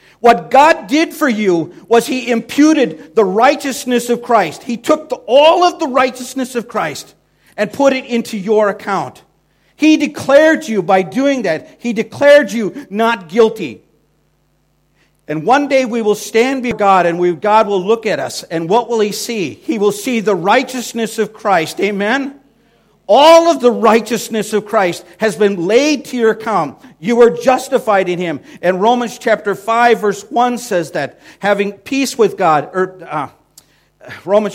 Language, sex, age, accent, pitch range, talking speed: English, male, 50-69, American, 190-250 Hz, 170 wpm